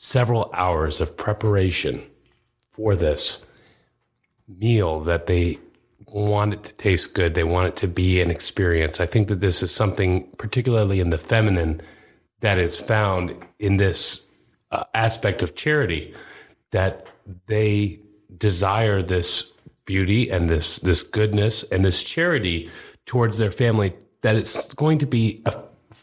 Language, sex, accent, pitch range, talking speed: English, male, American, 95-115 Hz, 140 wpm